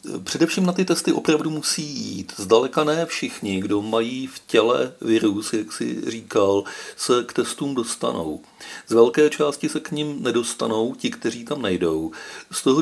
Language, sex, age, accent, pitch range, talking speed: Czech, male, 40-59, native, 105-140 Hz, 165 wpm